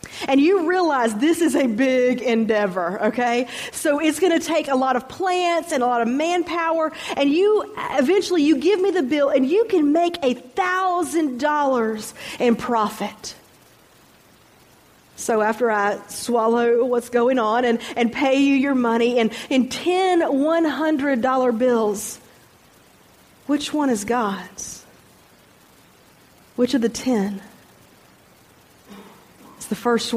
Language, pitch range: English, 230-280 Hz